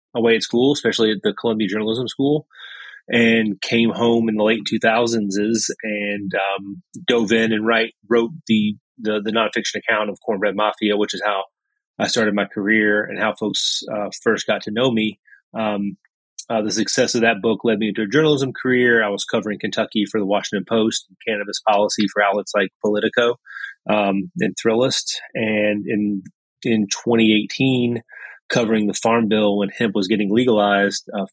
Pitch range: 100-115 Hz